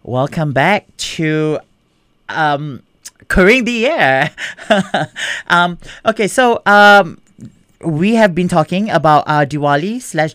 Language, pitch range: English, 125-160 Hz